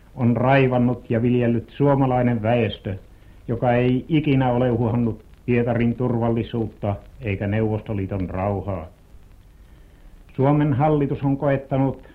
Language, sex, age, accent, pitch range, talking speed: Finnish, male, 60-79, native, 100-130 Hz, 100 wpm